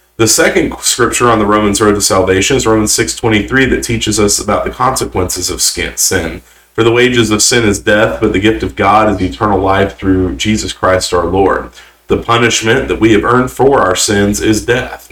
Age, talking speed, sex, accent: 40-59, 205 wpm, male, American